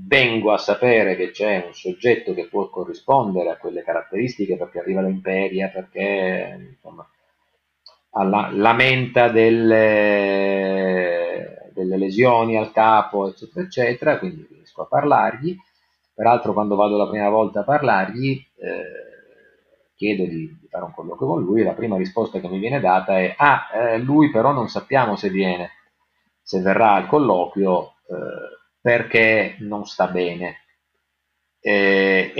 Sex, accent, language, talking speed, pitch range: male, native, Italian, 135 wpm, 90-125 Hz